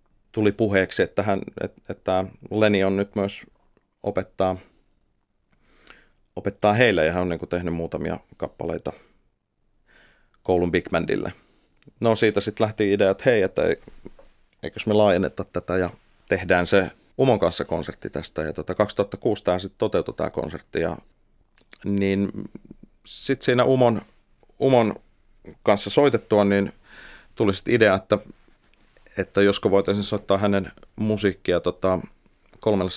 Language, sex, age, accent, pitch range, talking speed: Finnish, male, 30-49, native, 90-105 Hz, 130 wpm